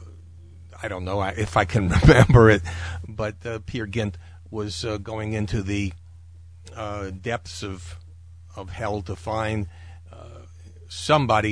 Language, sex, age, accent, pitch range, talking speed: English, male, 50-69, American, 85-110 Hz, 135 wpm